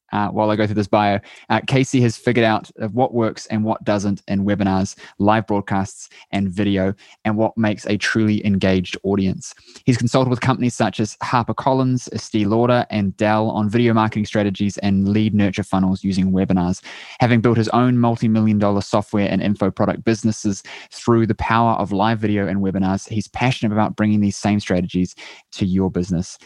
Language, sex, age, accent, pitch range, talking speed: English, male, 20-39, Australian, 100-115 Hz, 180 wpm